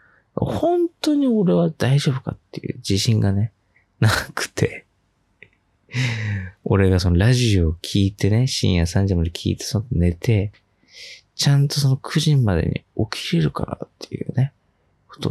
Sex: male